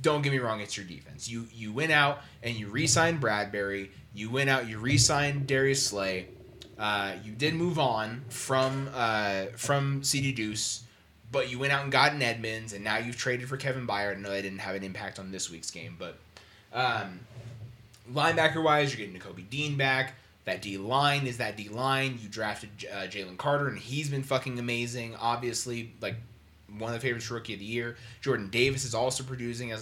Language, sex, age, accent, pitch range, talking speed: English, male, 20-39, American, 105-135 Hz, 195 wpm